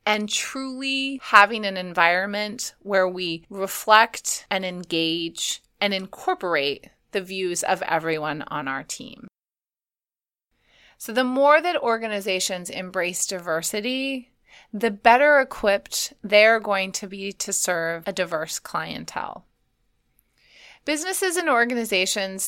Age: 30-49